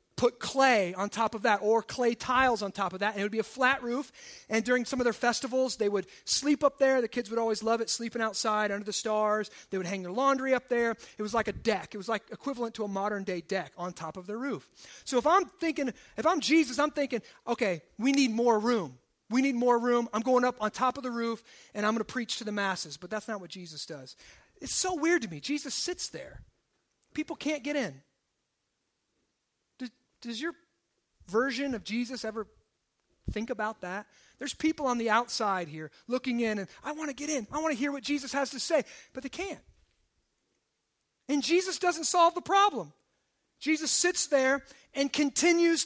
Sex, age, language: male, 30-49, English